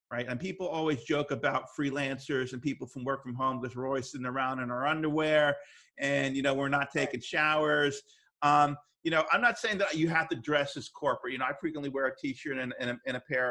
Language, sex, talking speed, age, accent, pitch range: English, male, 235 wpm, 40-59, American, 135-155 Hz